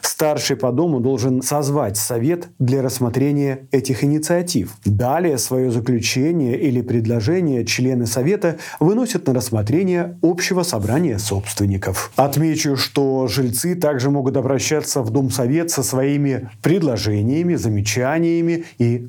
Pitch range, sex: 120-160 Hz, male